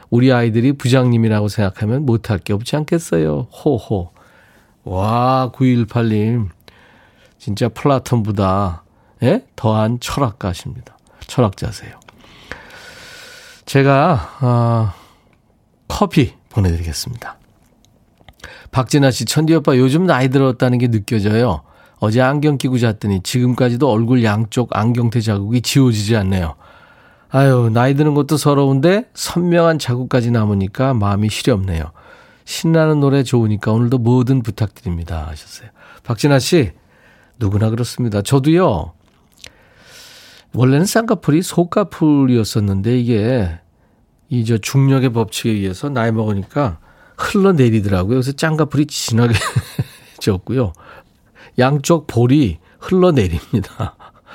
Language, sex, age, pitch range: Korean, male, 40-59, 105-135 Hz